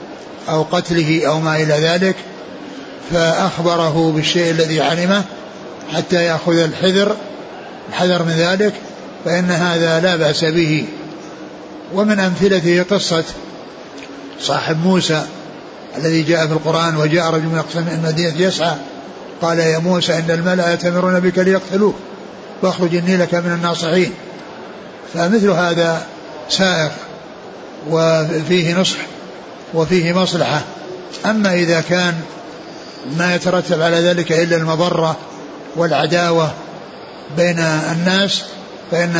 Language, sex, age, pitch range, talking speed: Arabic, male, 60-79, 165-185 Hz, 105 wpm